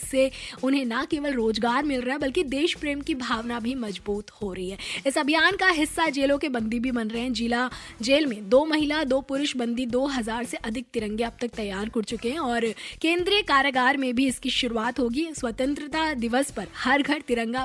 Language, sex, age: Hindi, female, 20-39